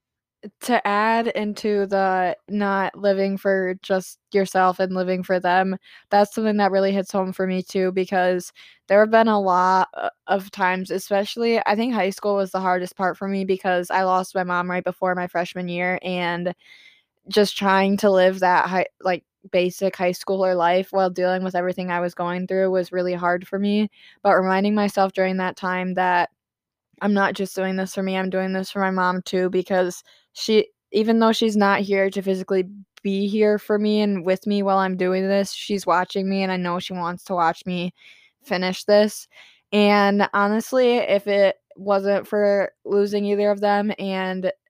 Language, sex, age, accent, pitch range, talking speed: English, female, 20-39, American, 185-200 Hz, 190 wpm